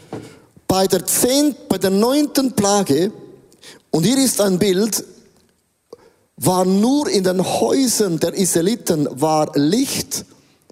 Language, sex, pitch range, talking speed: German, male, 160-205 Hz, 120 wpm